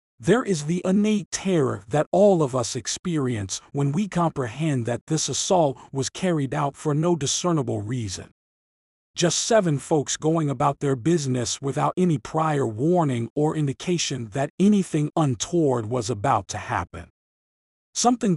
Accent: American